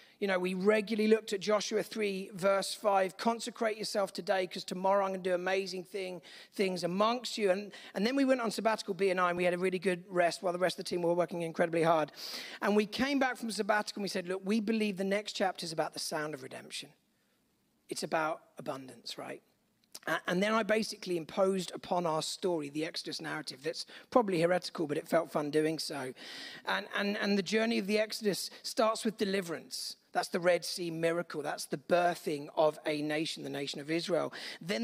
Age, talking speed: 40-59, 210 wpm